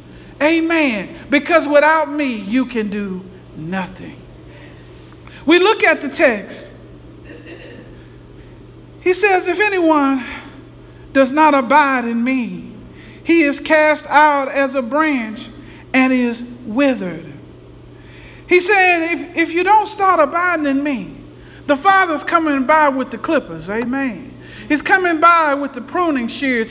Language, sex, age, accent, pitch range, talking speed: English, male, 50-69, American, 260-345 Hz, 130 wpm